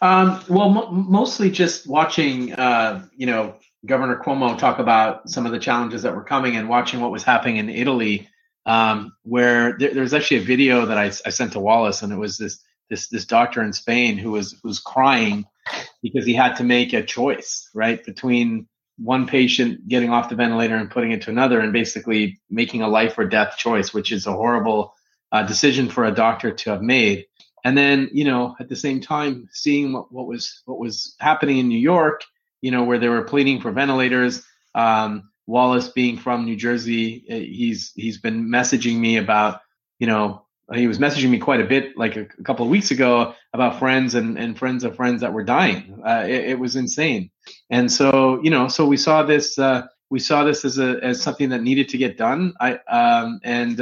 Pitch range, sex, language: 115-135 Hz, male, English